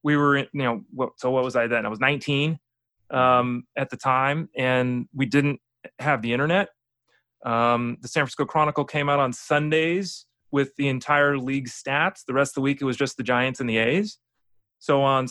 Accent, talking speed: American, 200 wpm